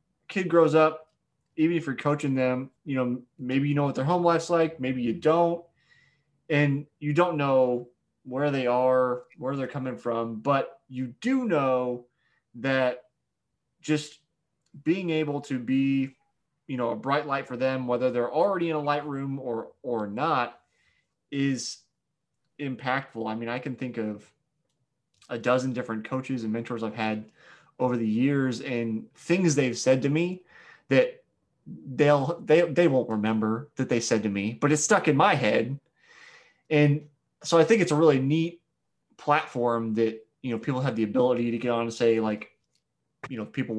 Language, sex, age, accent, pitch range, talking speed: English, male, 20-39, American, 120-150 Hz, 175 wpm